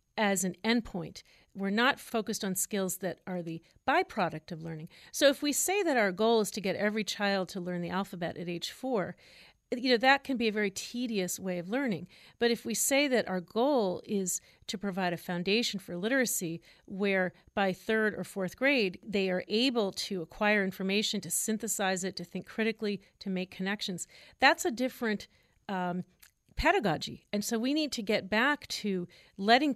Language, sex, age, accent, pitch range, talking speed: English, female, 40-59, American, 185-230 Hz, 190 wpm